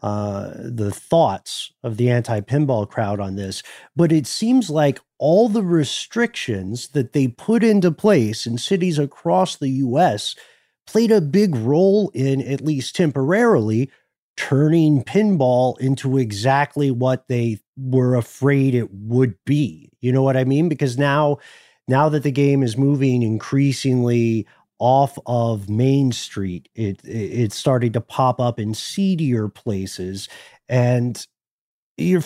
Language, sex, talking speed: English, male, 140 wpm